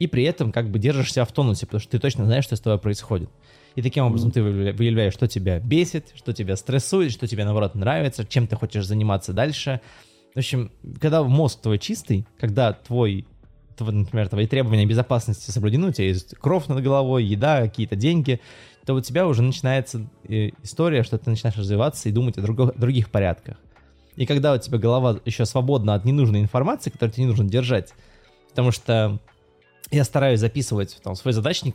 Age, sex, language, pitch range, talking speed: 20-39, male, Russian, 105-135 Hz, 185 wpm